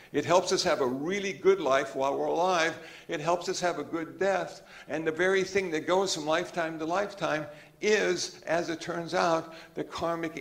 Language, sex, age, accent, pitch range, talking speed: English, male, 60-79, American, 150-195 Hz, 200 wpm